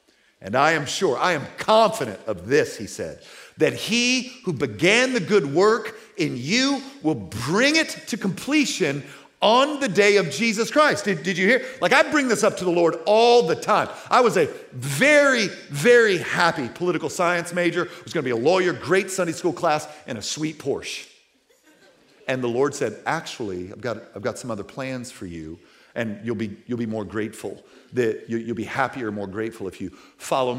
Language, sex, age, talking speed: English, male, 50-69, 190 wpm